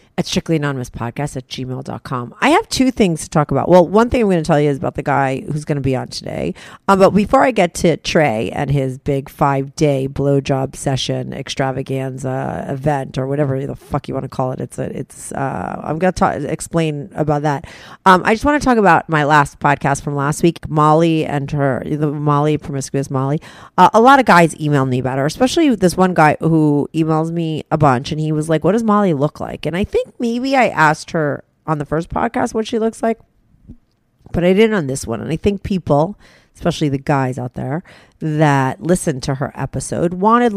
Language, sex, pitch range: English, female, 140-180 Hz